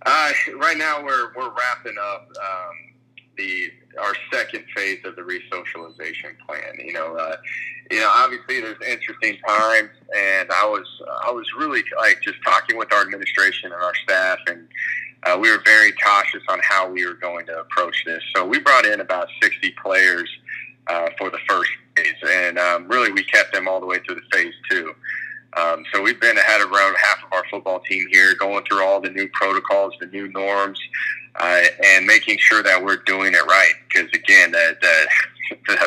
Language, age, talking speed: English, 30-49, 190 wpm